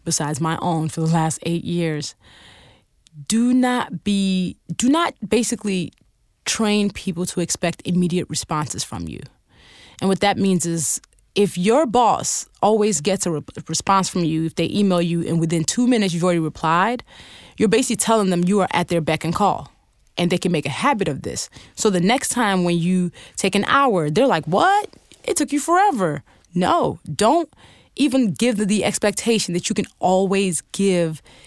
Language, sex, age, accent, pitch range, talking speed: English, female, 20-39, American, 165-210 Hz, 180 wpm